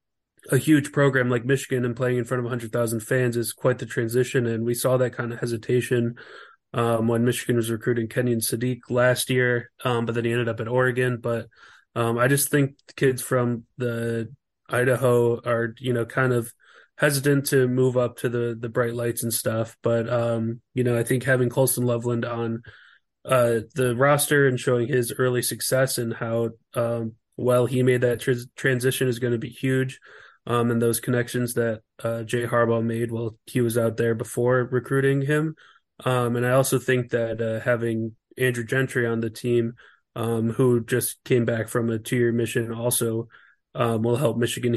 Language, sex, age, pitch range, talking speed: English, male, 20-39, 115-125 Hz, 195 wpm